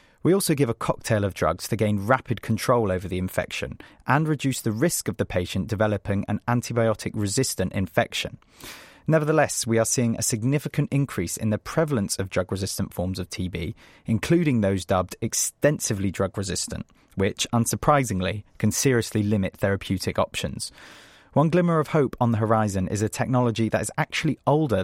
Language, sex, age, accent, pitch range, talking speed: English, male, 30-49, British, 95-130 Hz, 160 wpm